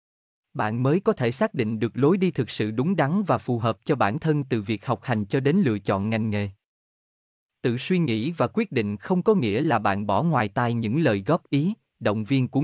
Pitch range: 110-165 Hz